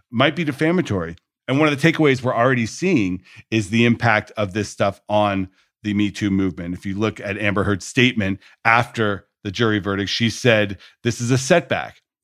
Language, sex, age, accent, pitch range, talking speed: English, male, 40-59, American, 100-125 Hz, 190 wpm